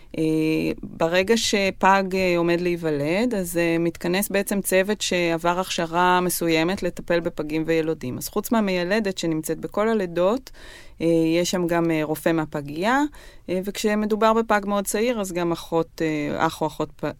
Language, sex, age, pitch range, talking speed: Hebrew, female, 30-49, 165-200 Hz, 120 wpm